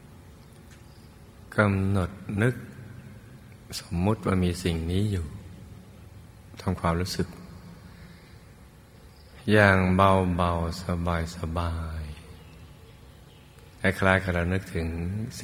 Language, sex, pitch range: Thai, male, 85-95 Hz